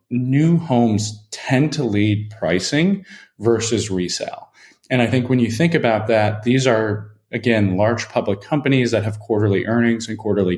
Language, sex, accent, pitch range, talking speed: English, male, American, 95-120 Hz, 160 wpm